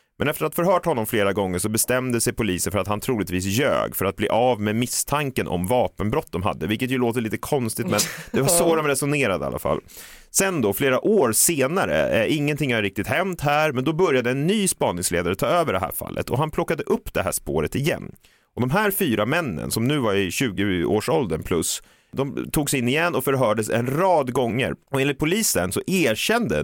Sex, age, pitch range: male, 30-49, 110-155 Hz